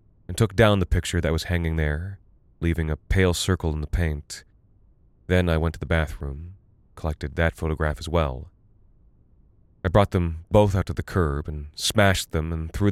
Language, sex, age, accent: English, male, 30-49, American